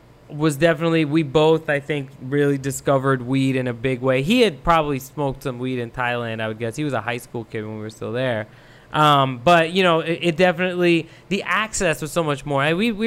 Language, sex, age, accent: English, male, 20-39, American